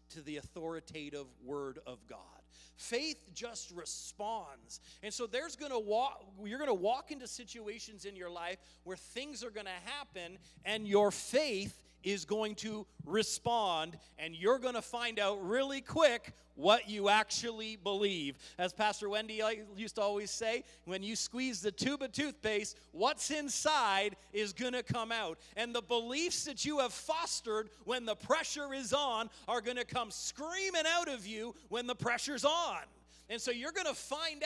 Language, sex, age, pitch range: English, male, 40-59, 195-265 Hz